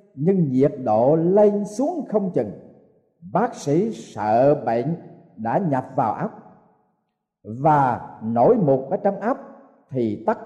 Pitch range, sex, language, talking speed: 150-220 Hz, male, Vietnamese, 130 wpm